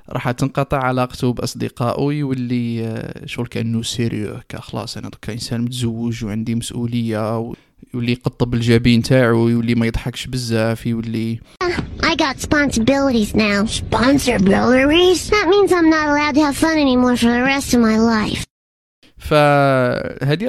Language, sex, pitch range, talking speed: Arabic, male, 115-155 Hz, 65 wpm